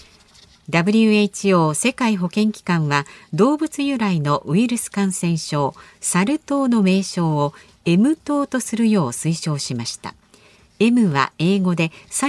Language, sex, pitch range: Japanese, female, 155-220 Hz